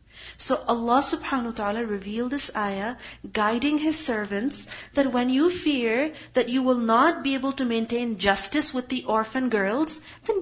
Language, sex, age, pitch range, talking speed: English, female, 40-59, 245-320 Hz, 165 wpm